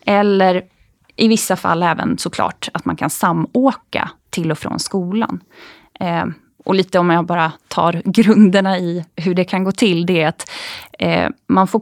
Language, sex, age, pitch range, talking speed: Swedish, female, 20-39, 175-210 Hz, 160 wpm